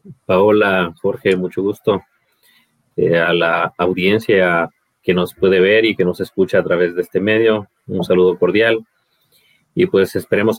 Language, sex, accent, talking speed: Spanish, male, Mexican, 155 wpm